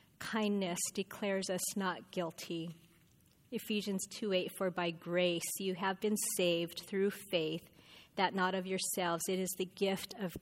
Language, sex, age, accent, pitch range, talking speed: English, female, 30-49, American, 175-205 Hz, 145 wpm